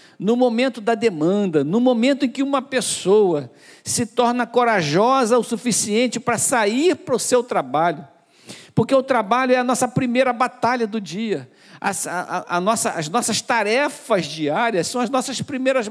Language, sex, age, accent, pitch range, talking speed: Portuguese, male, 60-79, Brazilian, 215-265 Hz, 150 wpm